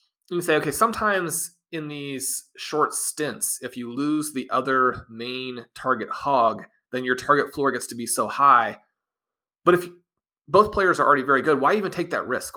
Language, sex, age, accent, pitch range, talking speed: English, male, 30-49, American, 120-160 Hz, 180 wpm